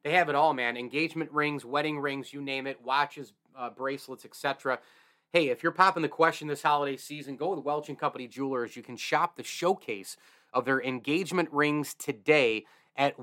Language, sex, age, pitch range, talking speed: English, male, 30-49, 130-165 Hz, 195 wpm